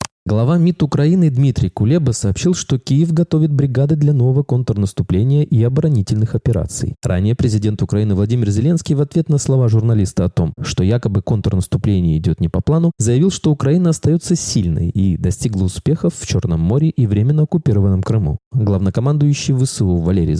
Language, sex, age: Russian, male, 20-39